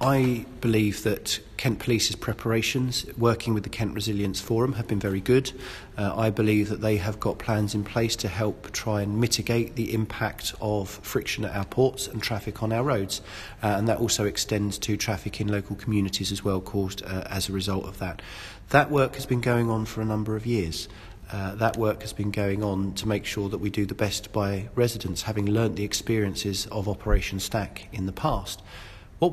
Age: 40-59